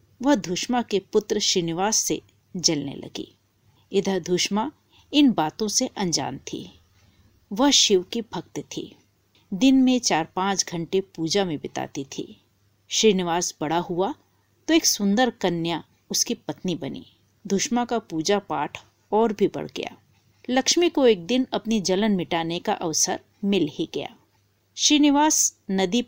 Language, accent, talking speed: Hindi, native, 140 wpm